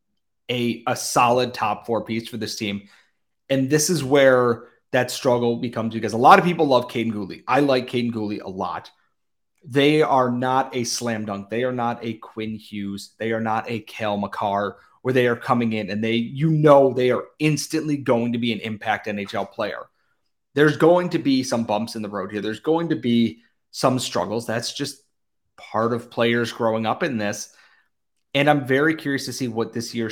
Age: 30-49